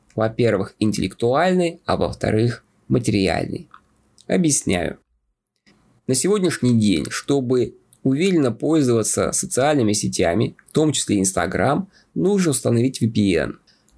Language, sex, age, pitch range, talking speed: Russian, male, 20-39, 110-150 Hz, 90 wpm